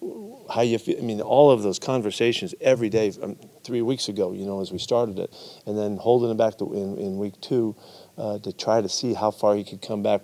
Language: English